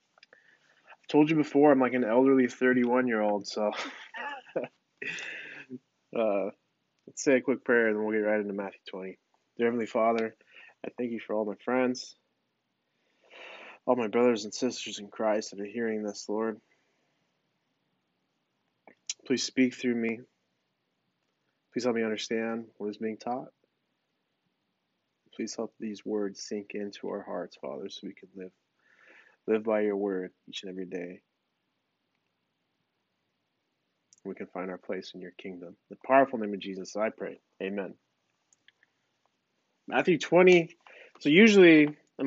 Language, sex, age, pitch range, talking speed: English, male, 20-39, 105-130 Hz, 140 wpm